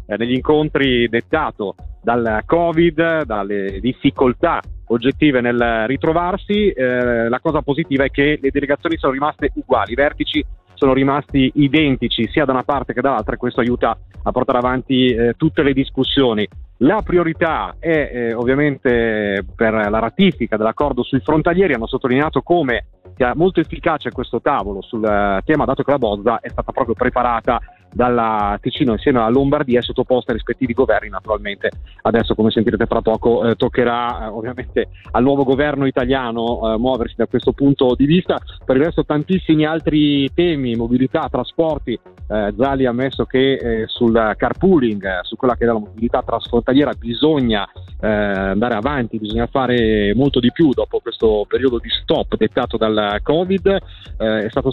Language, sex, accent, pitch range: Italian, male, native, 115-145 Hz